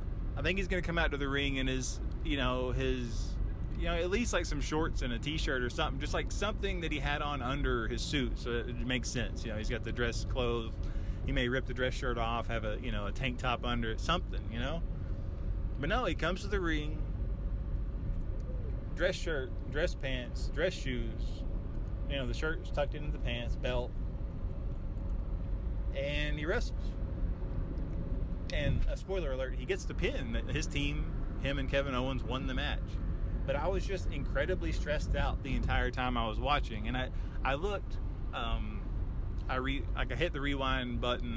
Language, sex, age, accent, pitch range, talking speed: English, male, 20-39, American, 100-130 Hz, 195 wpm